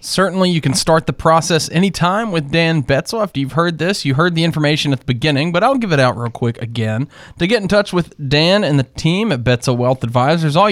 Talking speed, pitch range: 240 wpm, 130-170 Hz